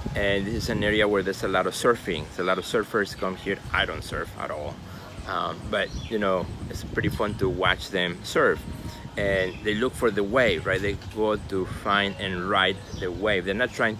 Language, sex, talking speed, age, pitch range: English, male, 220 wpm, 30-49, 95-110 Hz